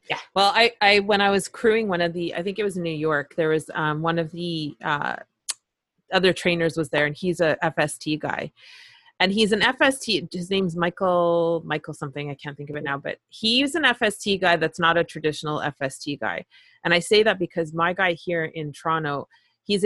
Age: 30-49